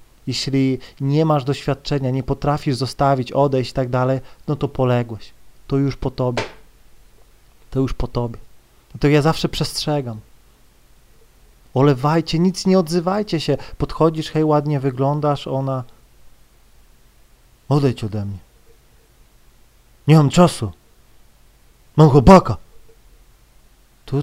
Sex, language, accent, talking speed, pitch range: male, Polish, native, 110 wpm, 125-155 Hz